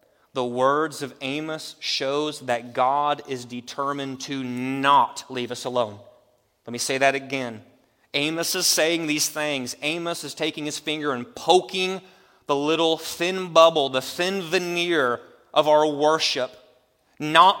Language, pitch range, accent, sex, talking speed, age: English, 155-210 Hz, American, male, 145 wpm, 30-49